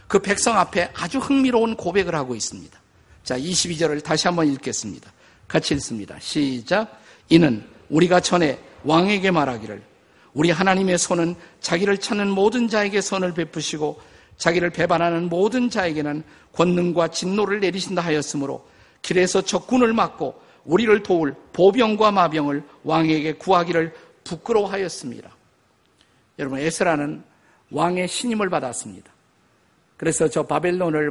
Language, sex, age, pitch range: Korean, male, 50-69, 155-200 Hz